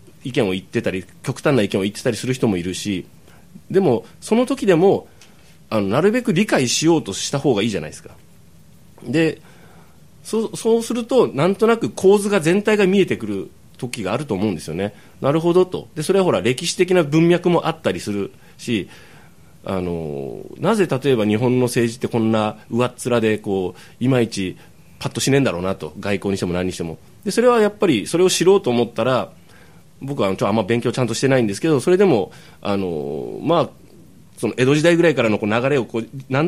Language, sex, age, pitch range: Japanese, male, 30-49, 105-170 Hz